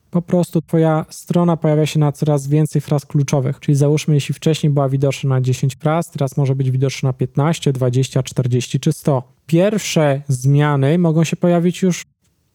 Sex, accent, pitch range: male, native, 135-165 Hz